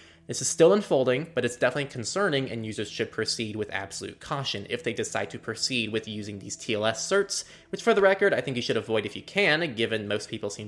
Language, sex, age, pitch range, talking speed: English, male, 20-39, 105-145 Hz, 230 wpm